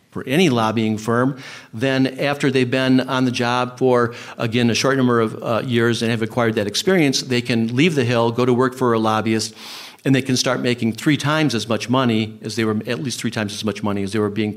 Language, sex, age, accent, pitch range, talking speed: English, male, 50-69, American, 110-140 Hz, 245 wpm